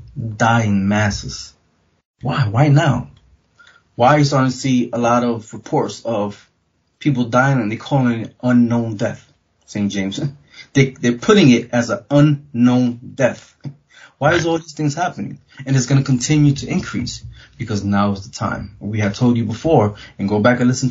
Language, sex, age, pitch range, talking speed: English, male, 20-39, 105-125 Hz, 180 wpm